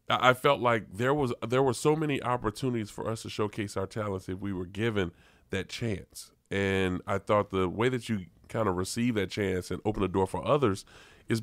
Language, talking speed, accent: English, 215 wpm, American